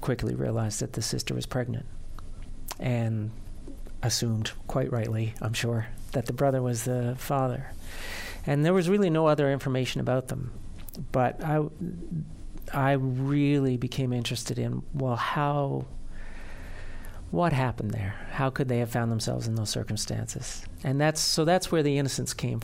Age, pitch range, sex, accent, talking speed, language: 50-69, 110-140 Hz, male, American, 150 wpm, English